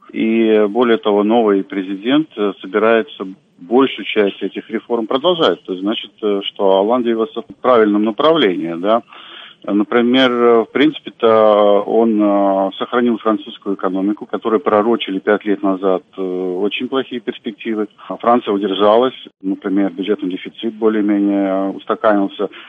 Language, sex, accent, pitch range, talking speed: Russian, male, native, 95-115 Hz, 115 wpm